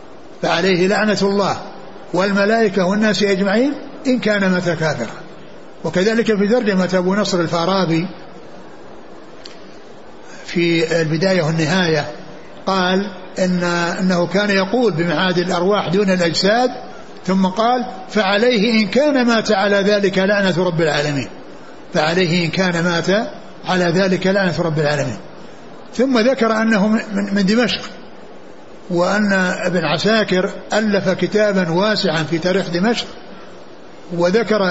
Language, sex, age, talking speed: Arabic, male, 60-79, 110 wpm